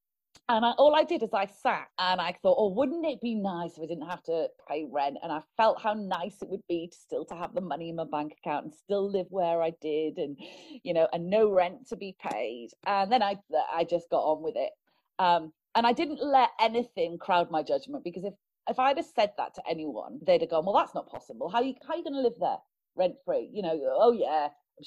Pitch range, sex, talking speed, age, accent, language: 160-245 Hz, female, 255 wpm, 30-49, British, English